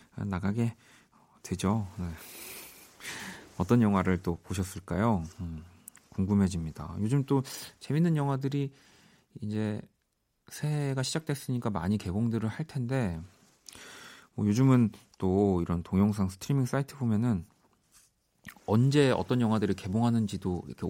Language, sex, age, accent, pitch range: Korean, male, 40-59, native, 95-125 Hz